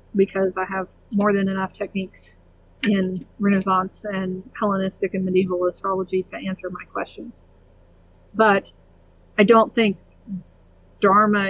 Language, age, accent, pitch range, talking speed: English, 40-59, American, 185-205 Hz, 120 wpm